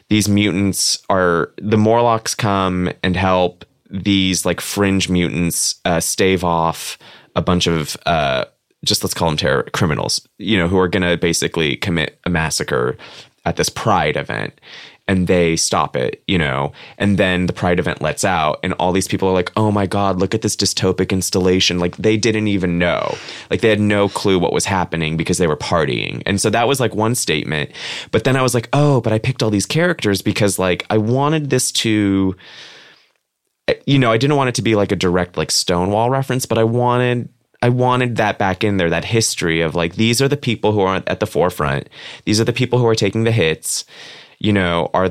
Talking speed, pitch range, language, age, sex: 210 wpm, 90-110 Hz, English, 20-39, male